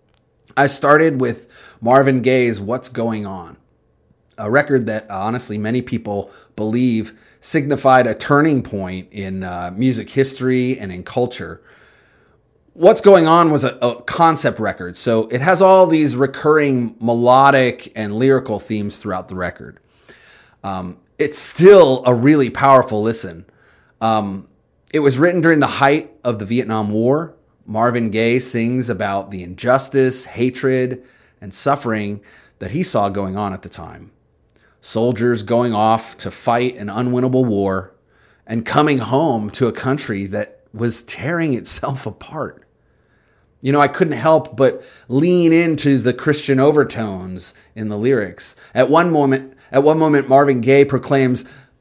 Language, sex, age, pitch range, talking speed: English, male, 30-49, 110-140 Hz, 145 wpm